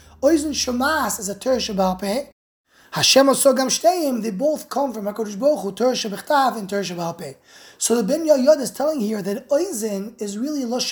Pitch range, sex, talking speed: 205-270 Hz, male, 175 wpm